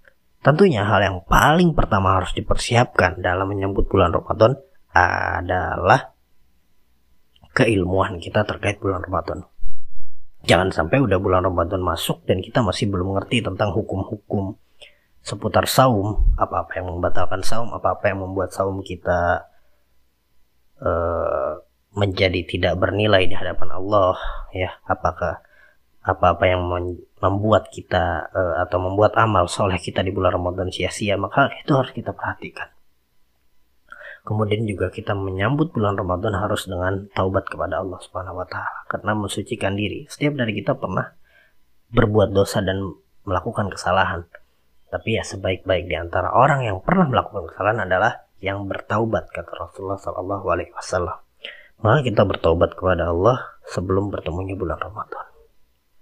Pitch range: 90-105 Hz